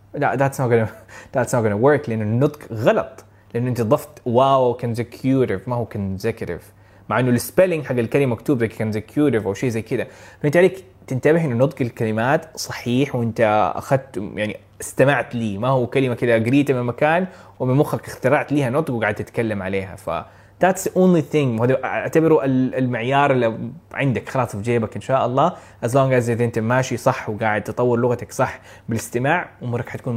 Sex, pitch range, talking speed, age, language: male, 115-155 Hz, 160 wpm, 20-39, Arabic